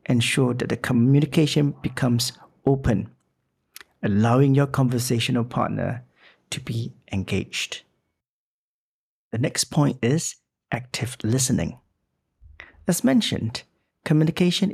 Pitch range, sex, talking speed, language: 115-150 Hz, male, 90 wpm, English